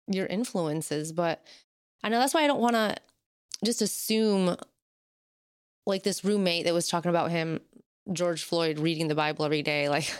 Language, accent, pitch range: English, American, 165-220 Hz